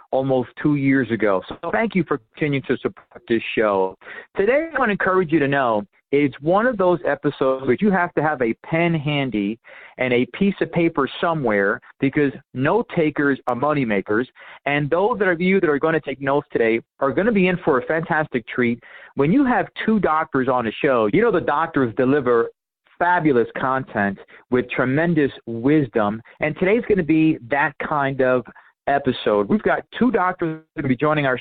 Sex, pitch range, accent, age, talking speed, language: male, 130-175 Hz, American, 40-59, 195 wpm, English